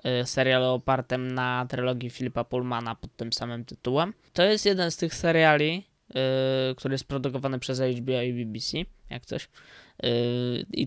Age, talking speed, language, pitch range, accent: 20-39, 155 wpm, Polish, 125-150 Hz, native